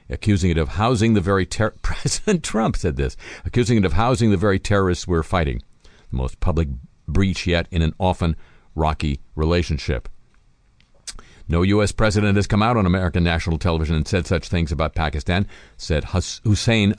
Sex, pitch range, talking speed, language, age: male, 85-110 Hz, 175 wpm, English, 50-69